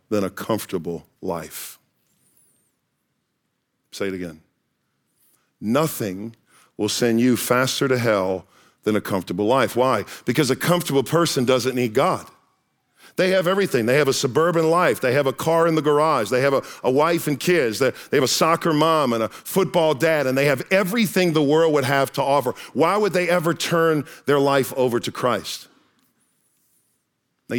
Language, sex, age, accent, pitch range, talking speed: English, male, 40-59, American, 115-155 Hz, 170 wpm